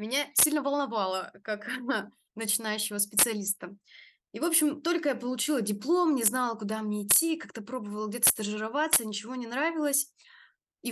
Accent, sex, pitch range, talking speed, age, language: native, female, 210-290 Hz, 145 wpm, 20-39, Russian